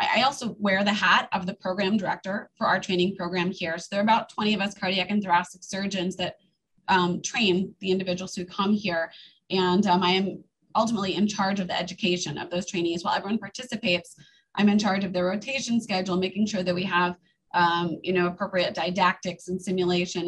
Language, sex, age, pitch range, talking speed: English, female, 20-39, 175-205 Hz, 200 wpm